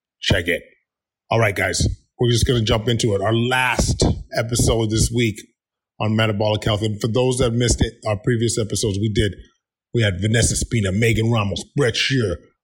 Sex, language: male, English